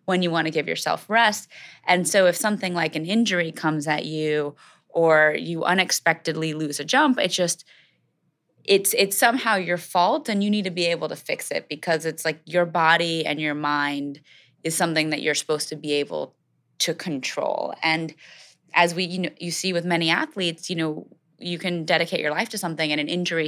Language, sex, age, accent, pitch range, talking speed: English, female, 20-39, American, 160-190 Hz, 200 wpm